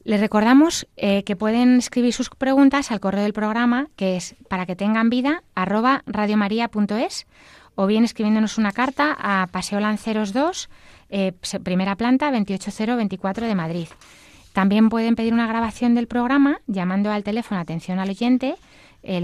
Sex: female